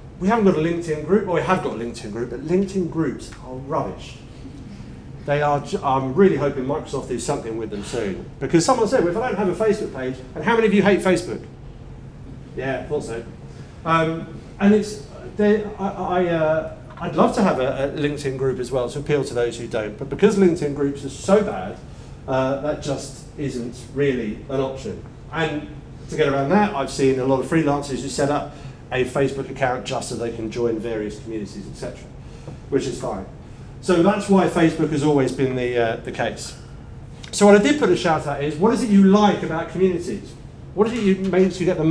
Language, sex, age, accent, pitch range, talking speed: English, male, 40-59, British, 130-180 Hz, 215 wpm